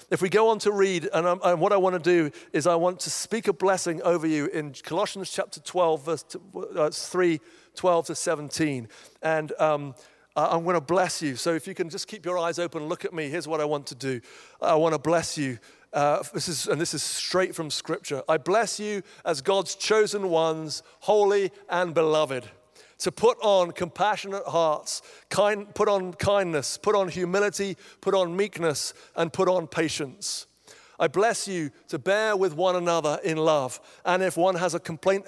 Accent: British